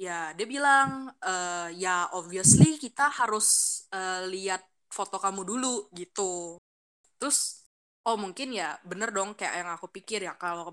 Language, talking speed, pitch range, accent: Indonesian, 145 wpm, 185-230 Hz, native